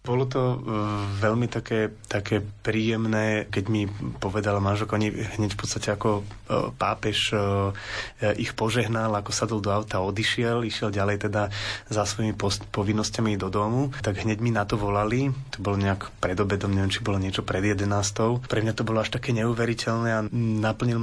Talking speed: 165 wpm